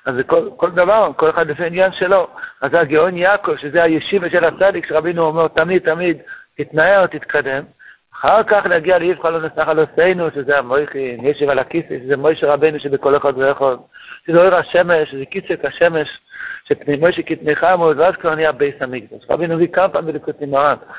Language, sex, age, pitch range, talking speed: Hebrew, male, 60-79, 150-195 Hz, 175 wpm